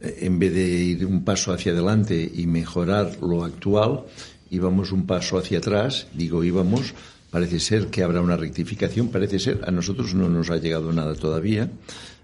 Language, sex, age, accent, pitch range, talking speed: Spanish, male, 60-79, Spanish, 85-105 Hz, 170 wpm